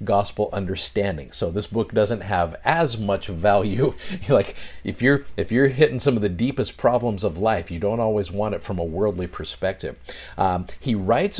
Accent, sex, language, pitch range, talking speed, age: American, male, English, 95-125 Hz, 185 wpm, 50-69